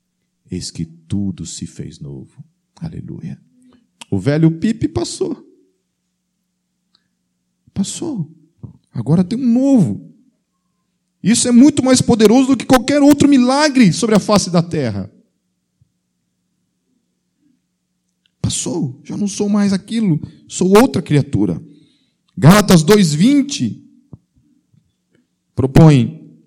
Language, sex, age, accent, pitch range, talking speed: Portuguese, male, 40-59, Brazilian, 125-190 Hz, 100 wpm